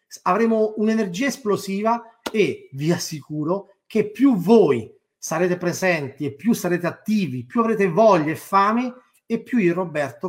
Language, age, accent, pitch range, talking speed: Italian, 30-49, native, 165-215 Hz, 145 wpm